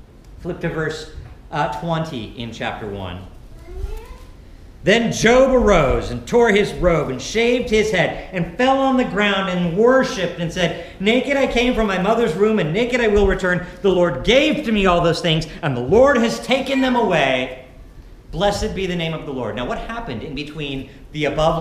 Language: English